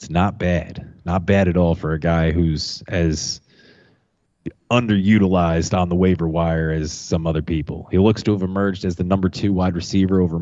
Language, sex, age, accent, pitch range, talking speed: English, male, 30-49, American, 85-95 Hz, 190 wpm